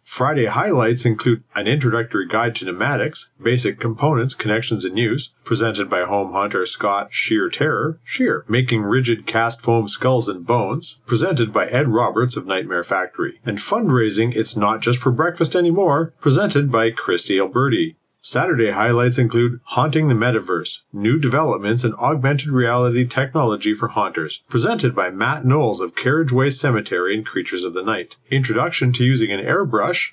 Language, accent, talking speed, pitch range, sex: English, American, 155 wpm, 115-140 Hz, male